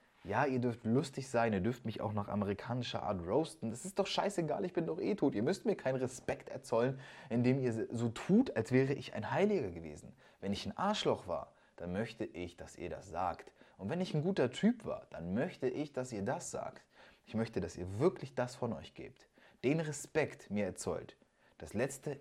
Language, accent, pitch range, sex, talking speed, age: German, German, 95-140 Hz, male, 215 wpm, 20-39